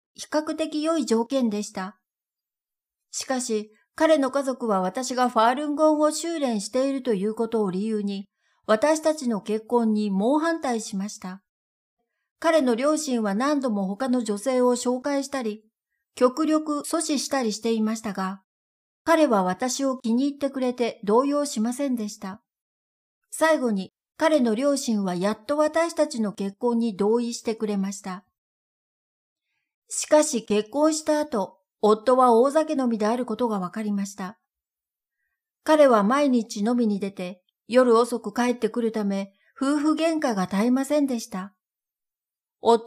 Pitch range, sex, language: 210-285 Hz, female, Japanese